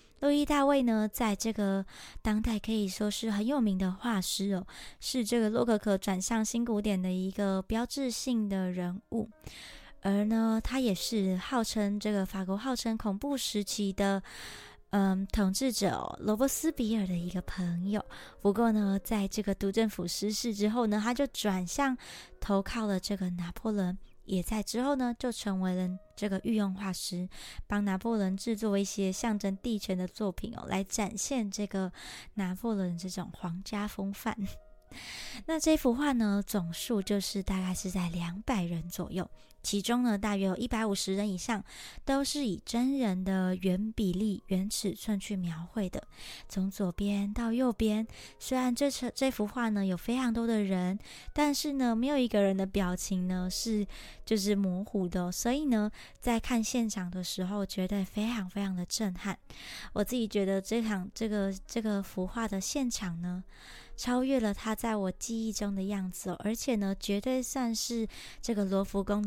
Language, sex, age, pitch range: Chinese, male, 20-39, 190-230 Hz